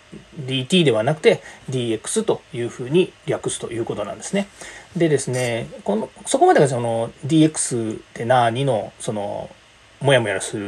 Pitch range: 130-205 Hz